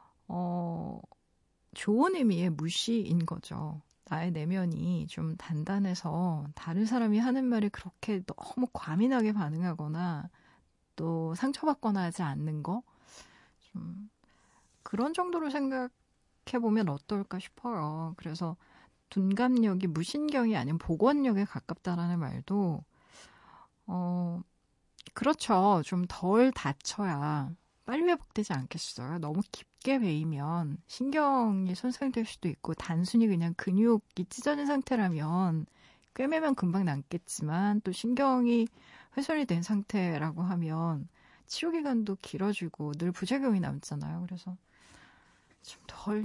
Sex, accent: female, native